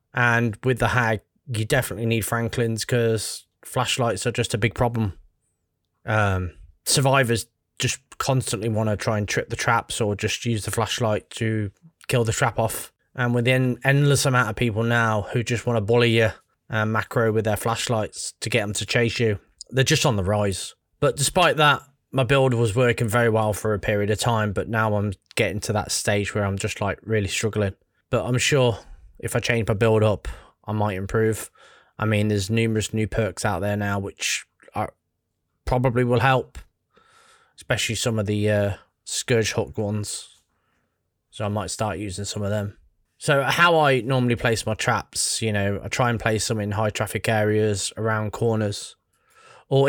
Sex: male